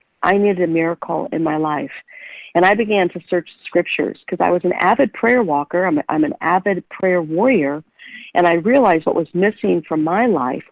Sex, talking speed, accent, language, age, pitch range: female, 200 wpm, American, English, 50-69, 165-195 Hz